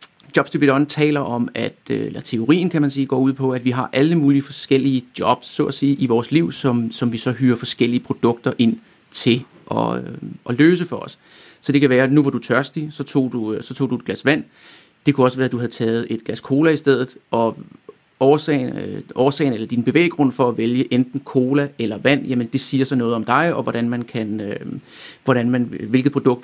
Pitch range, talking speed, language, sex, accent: 120-145 Hz, 220 wpm, Danish, male, native